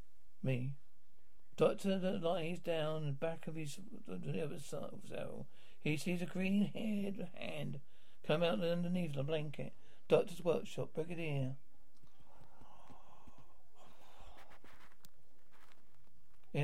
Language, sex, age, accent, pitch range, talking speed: English, male, 60-79, British, 140-180 Hz, 85 wpm